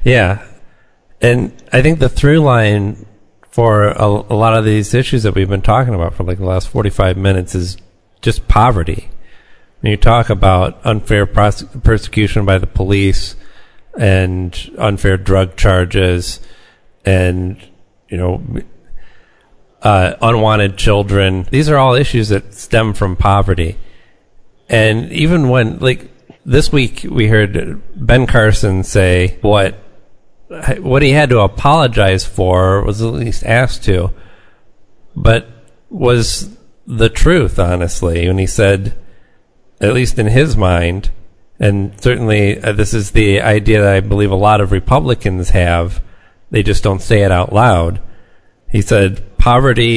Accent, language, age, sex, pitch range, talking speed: American, English, 40-59, male, 95-115 Hz, 140 wpm